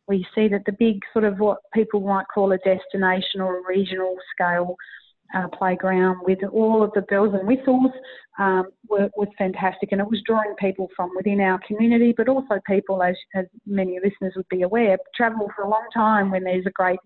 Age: 30-49